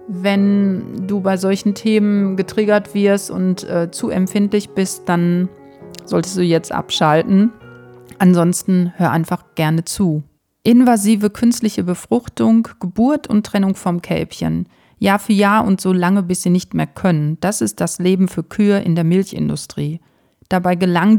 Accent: German